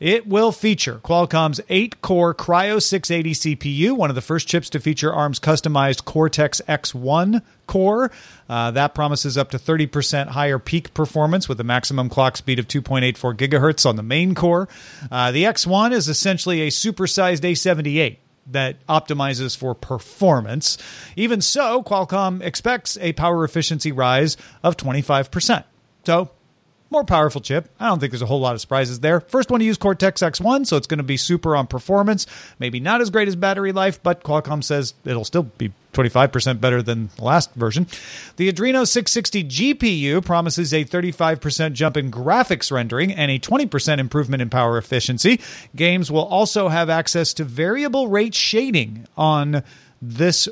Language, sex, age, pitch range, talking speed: English, male, 40-59, 135-185 Hz, 165 wpm